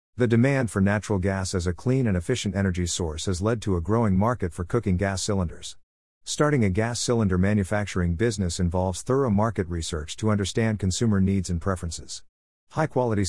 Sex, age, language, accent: male, 50-69, English, American